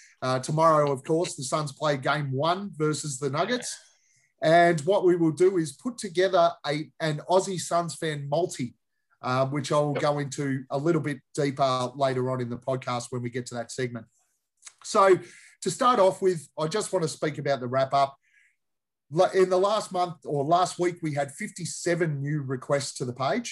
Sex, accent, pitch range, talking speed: male, Australian, 135-165 Hz, 185 wpm